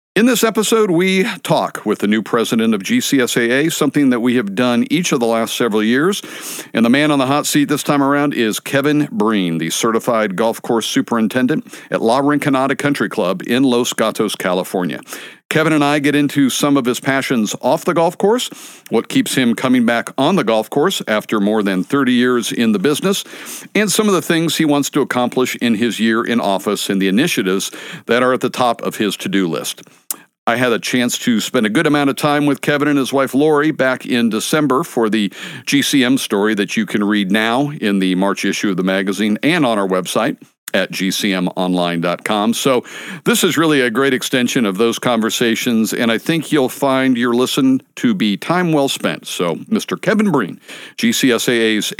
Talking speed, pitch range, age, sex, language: 200 wpm, 115-155 Hz, 50-69, male, English